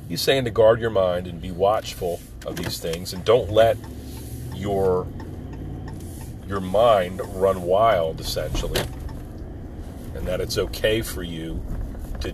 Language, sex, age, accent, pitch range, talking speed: English, male, 40-59, American, 85-105 Hz, 135 wpm